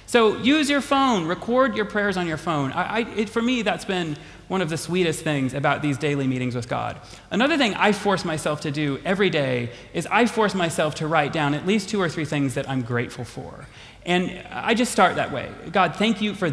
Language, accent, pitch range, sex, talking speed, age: English, American, 140-210 Hz, male, 220 wpm, 30-49